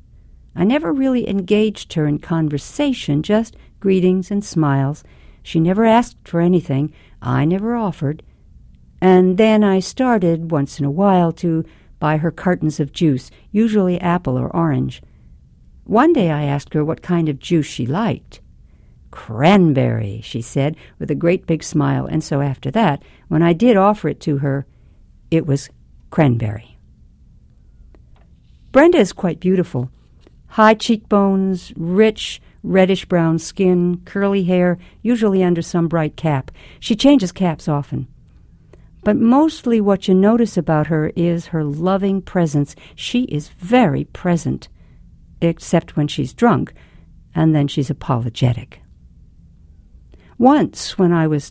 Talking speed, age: 135 wpm, 60-79